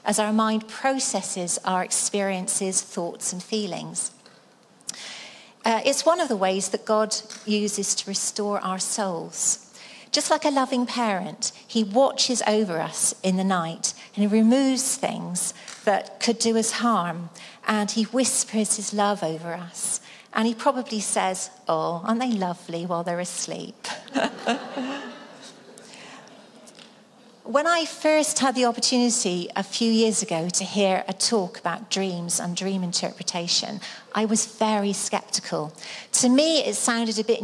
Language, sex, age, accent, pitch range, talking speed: English, female, 40-59, British, 190-235 Hz, 145 wpm